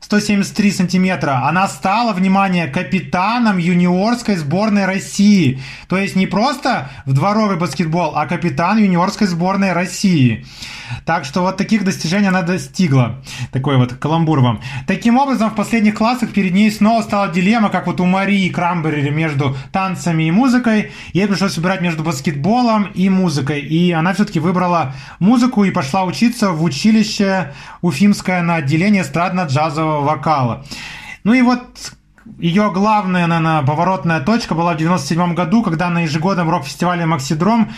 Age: 30-49